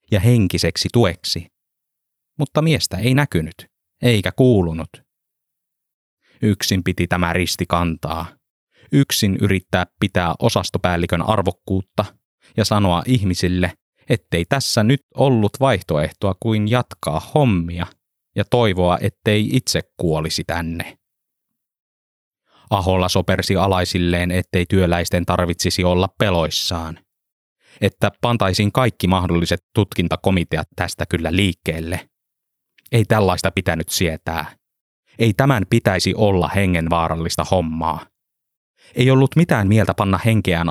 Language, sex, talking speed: Finnish, male, 100 wpm